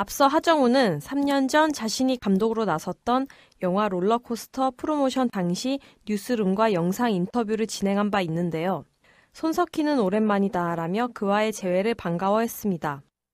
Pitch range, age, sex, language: 185-245 Hz, 20-39, female, Korean